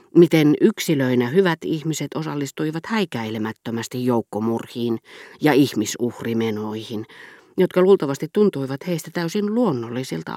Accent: native